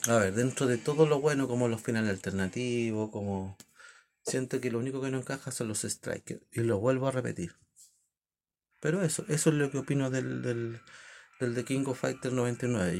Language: Spanish